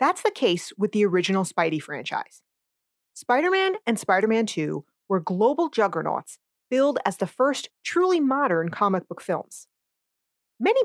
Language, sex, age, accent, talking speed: English, female, 30-49, American, 140 wpm